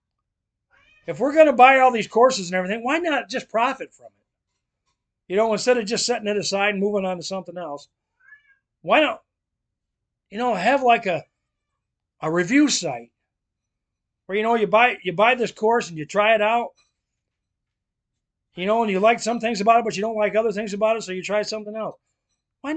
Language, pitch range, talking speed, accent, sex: English, 180-260 Hz, 200 wpm, American, male